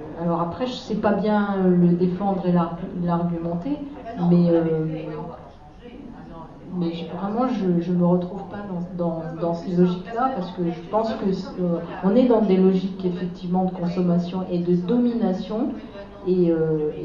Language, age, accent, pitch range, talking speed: French, 40-59, French, 170-210 Hz, 150 wpm